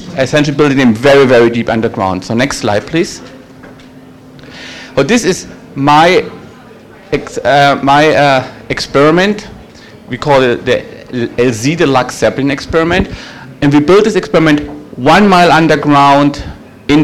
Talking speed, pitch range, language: 130 wpm, 125-170 Hz, English